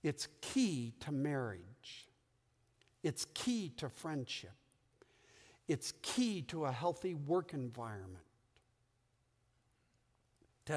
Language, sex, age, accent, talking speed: English, male, 60-79, American, 90 wpm